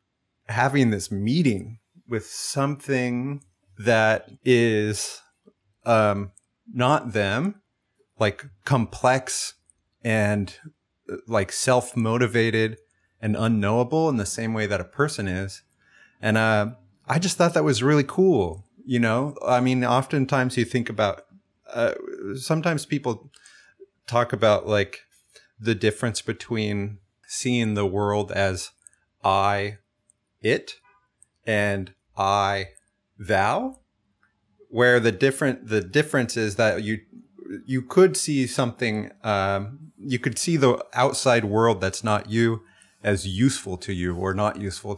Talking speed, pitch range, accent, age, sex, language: 120 wpm, 100-130 Hz, American, 30-49, male, English